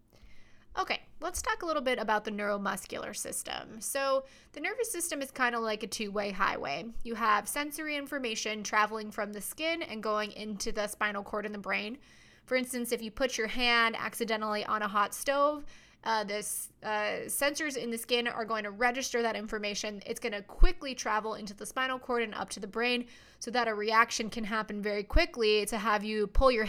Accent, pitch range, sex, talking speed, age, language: American, 215-250 Hz, female, 200 wpm, 20-39, English